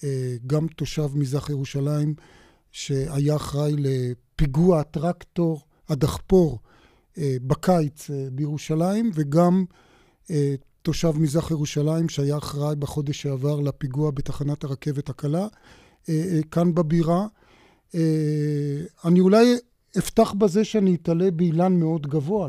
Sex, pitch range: male, 150-185 Hz